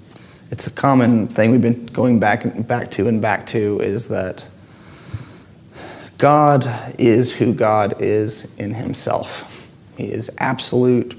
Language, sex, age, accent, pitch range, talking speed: English, male, 30-49, American, 110-120 Hz, 140 wpm